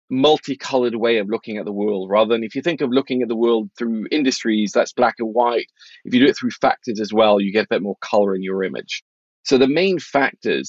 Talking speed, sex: 245 wpm, male